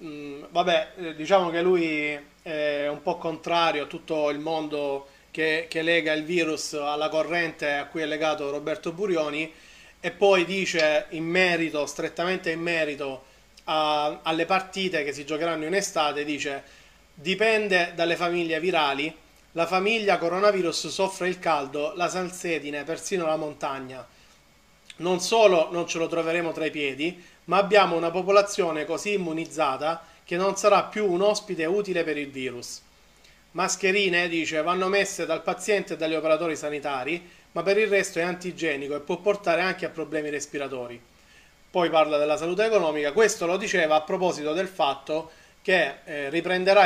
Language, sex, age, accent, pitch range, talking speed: Italian, male, 30-49, native, 150-180 Hz, 150 wpm